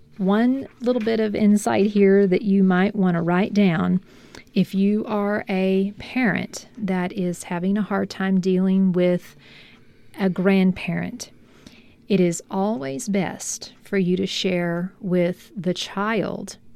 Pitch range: 180-210 Hz